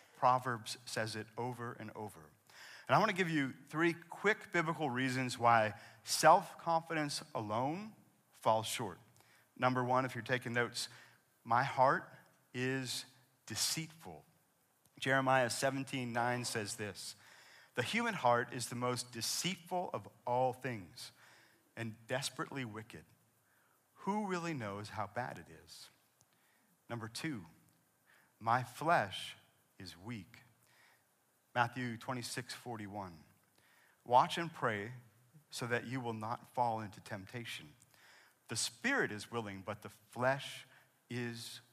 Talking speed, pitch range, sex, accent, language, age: 120 wpm, 115-140 Hz, male, American, English, 40-59